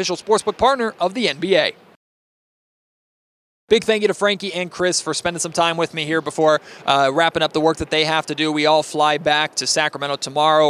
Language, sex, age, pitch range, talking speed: English, male, 20-39, 140-170 Hz, 215 wpm